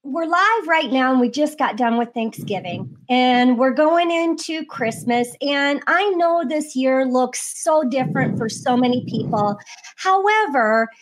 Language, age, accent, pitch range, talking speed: English, 40-59, American, 245-325 Hz, 160 wpm